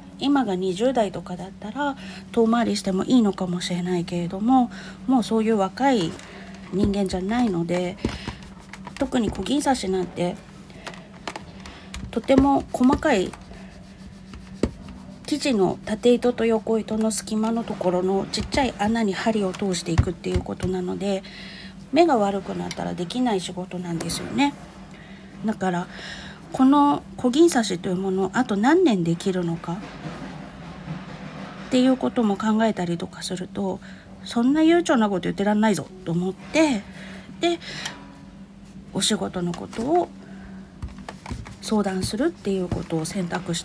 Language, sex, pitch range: Japanese, female, 185-235 Hz